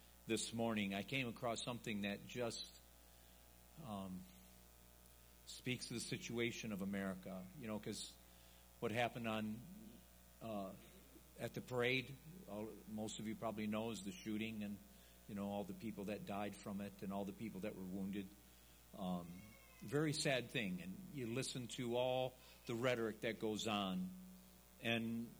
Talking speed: 155 wpm